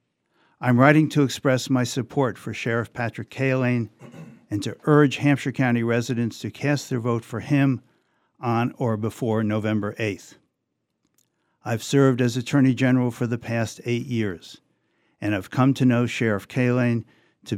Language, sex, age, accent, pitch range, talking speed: English, male, 60-79, American, 110-130 Hz, 155 wpm